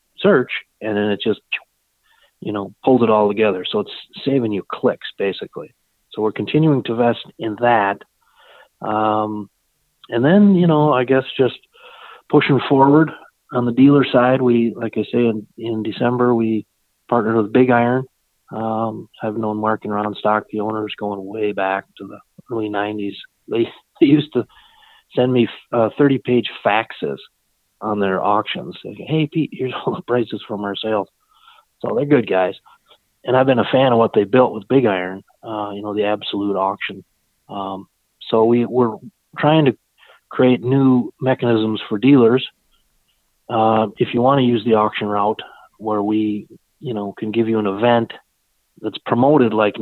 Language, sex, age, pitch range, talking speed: English, male, 30-49, 105-125 Hz, 170 wpm